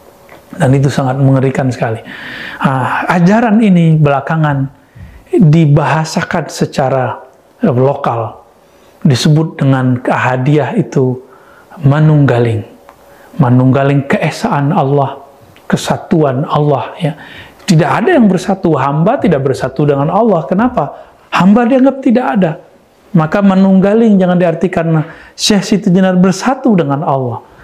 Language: Indonesian